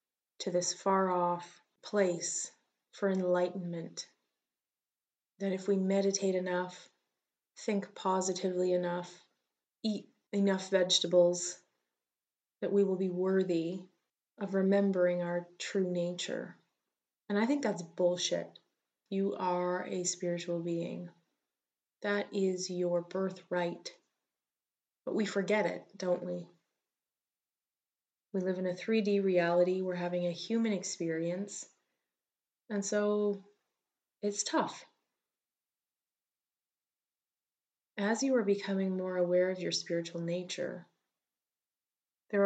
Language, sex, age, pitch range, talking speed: English, female, 20-39, 175-195 Hz, 105 wpm